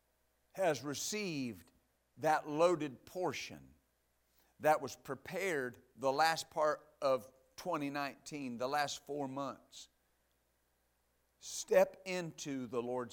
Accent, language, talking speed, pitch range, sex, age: American, English, 95 wpm, 120-180 Hz, male, 50-69